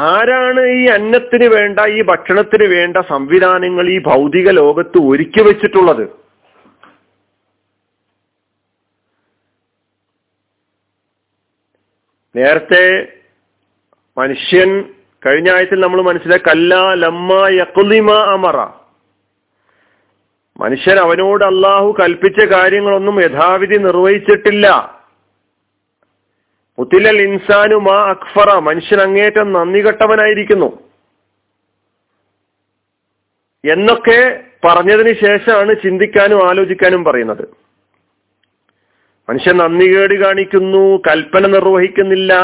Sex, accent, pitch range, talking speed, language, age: male, native, 160-205 Hz, 70 wpm, Malayalam, 40-59